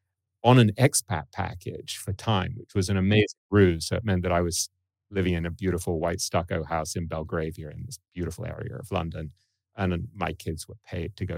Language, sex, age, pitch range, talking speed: English, male, 30-49, 85-105 Hz, 205 wpm